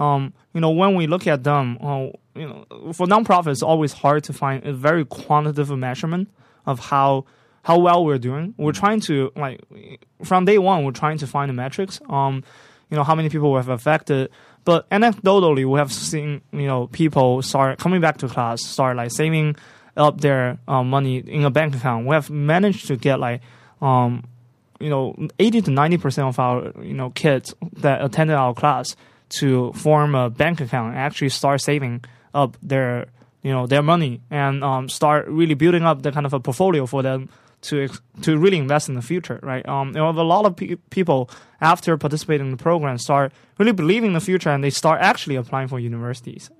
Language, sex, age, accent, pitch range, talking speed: English, male, 20-39, Chinese, 130-160 Hz, 200 wpm